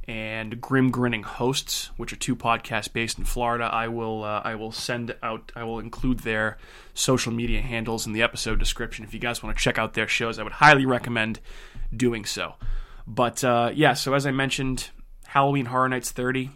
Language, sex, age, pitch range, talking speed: English, male, 20-39, 110-130 Hz, 200 wpm